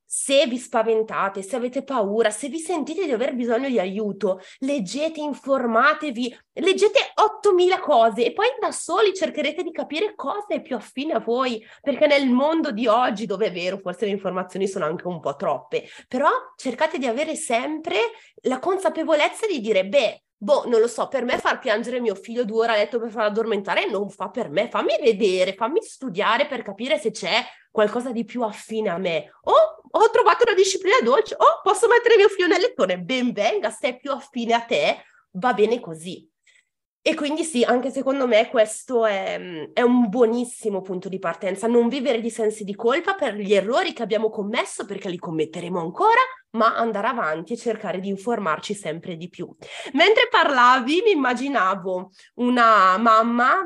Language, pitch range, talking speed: Italian, 220-320 Hz, 180 wpm